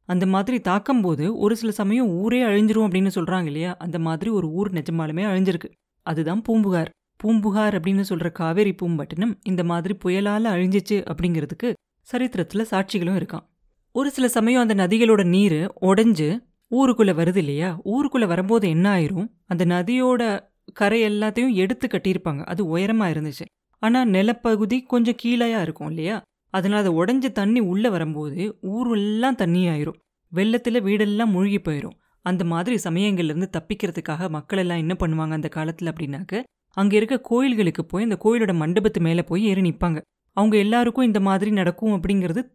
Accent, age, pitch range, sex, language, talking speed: native, 30-49, 175-220 Hz, female, Tamil, 145 wpm